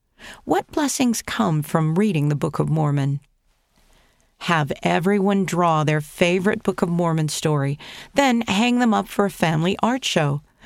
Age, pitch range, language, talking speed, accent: 50-69, 150-215 Hz, English, 150 wpm, American